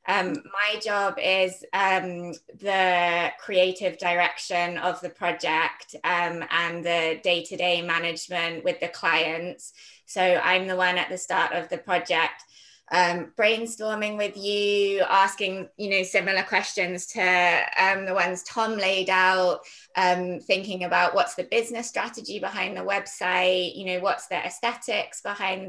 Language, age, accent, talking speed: English, 20-39, British, 140 wpm